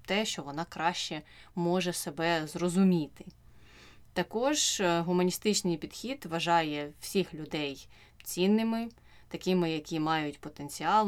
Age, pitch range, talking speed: 20-39, 155-185 Hz, 100 wpm